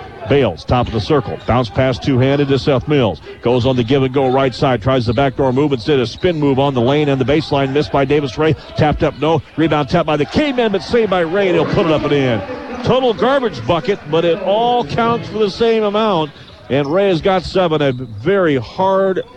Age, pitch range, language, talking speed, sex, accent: 50-69, 125-155 Hz, English, 230 wpm, male, American